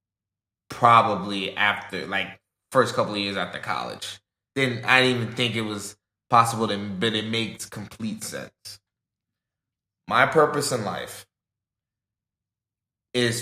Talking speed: 125 wpm